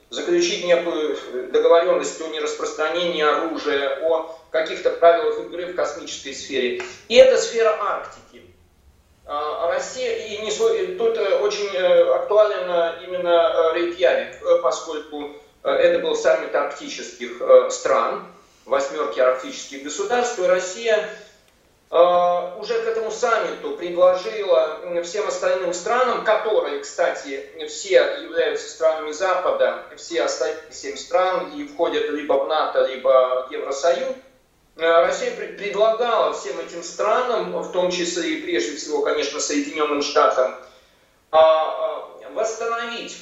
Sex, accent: male, native